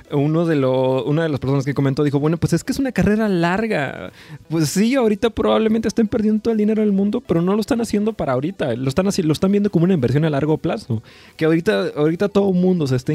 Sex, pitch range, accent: male, 120-185 Hz, Mexican